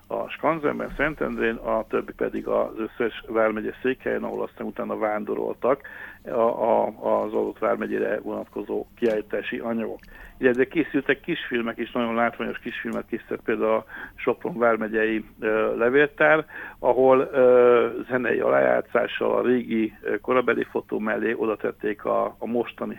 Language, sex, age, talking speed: Hungarian, male, 60-79, 130 wpm